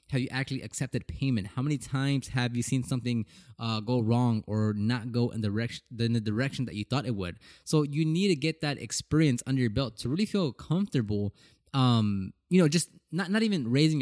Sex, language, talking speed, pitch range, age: male, English, 215 wpm, 115-145 Hz, 20-39